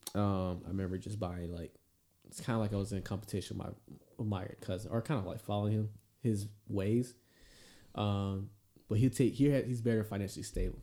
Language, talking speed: English, 215 wpm